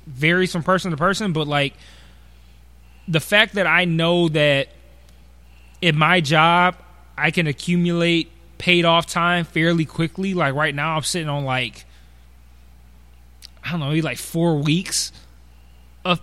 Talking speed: 145 wpm